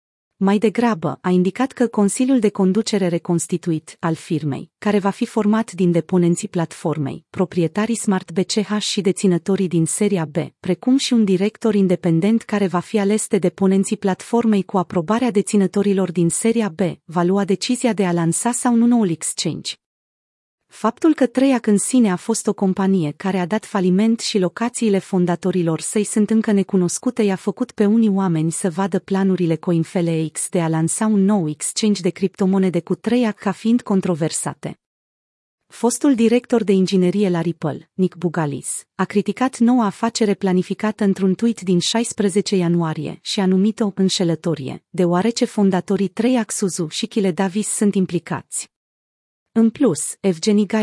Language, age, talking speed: Romanian, 30-49, 150 wpm